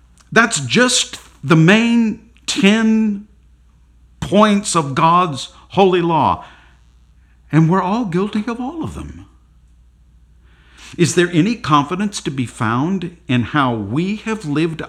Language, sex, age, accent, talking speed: English, male, 50-69, American, 120 wpm